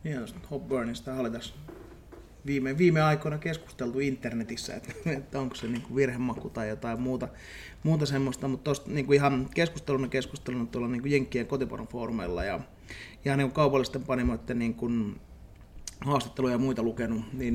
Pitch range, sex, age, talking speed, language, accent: 115-130 Hz, male, 30-49, 145 wpm, Finnish, native